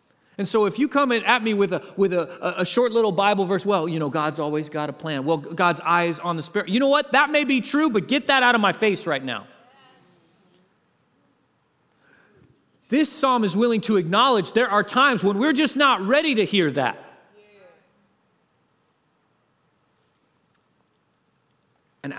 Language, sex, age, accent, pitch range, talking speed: English, male, 40-59, American, 150-220 Hz, 175 wpm